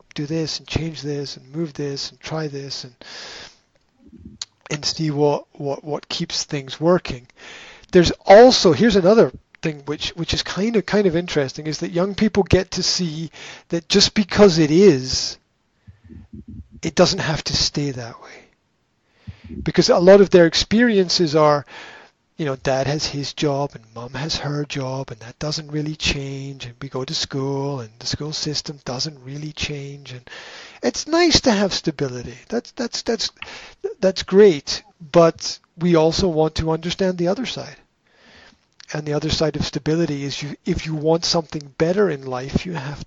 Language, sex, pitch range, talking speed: English, male, 140-180 Hz, 175 wpm